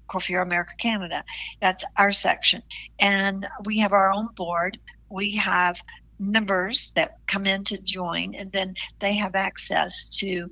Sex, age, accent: female, 60-79, American